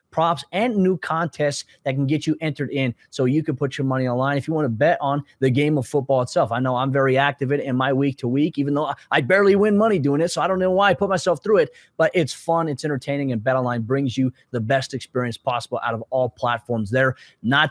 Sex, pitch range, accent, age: male, 130-165 Hz, American, 20-39